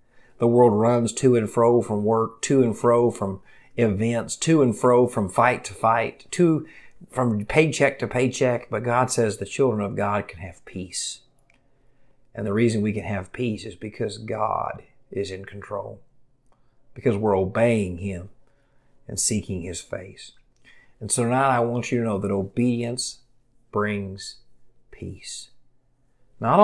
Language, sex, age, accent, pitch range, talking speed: English, male, 50-69, American, 100-130 Hz, 155 wpm